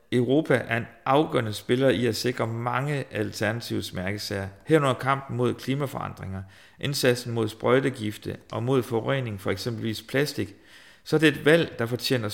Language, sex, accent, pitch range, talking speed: Danish, male, native, 110-135 Hz, 150 wpm